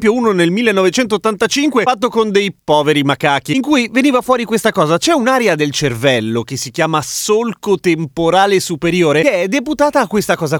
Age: 30-49